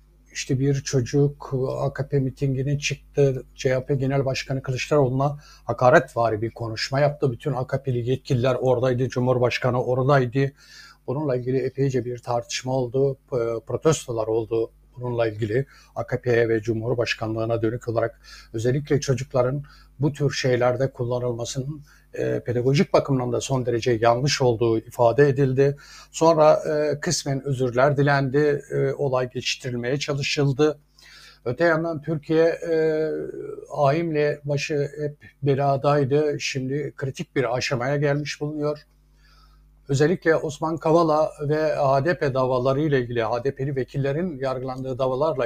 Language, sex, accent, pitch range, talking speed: Turkish, male, native, 125-145 Hz, 115 wpm